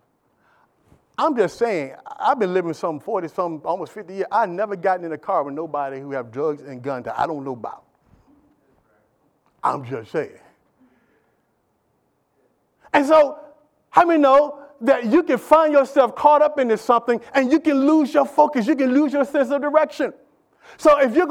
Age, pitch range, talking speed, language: 50-69, 230-300 Hz, 180 wpm, English